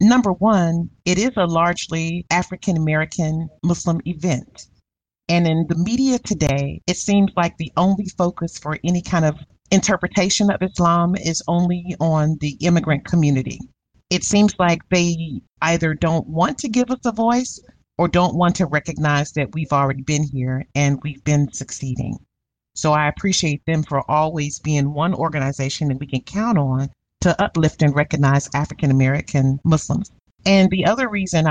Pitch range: 150-185 Hz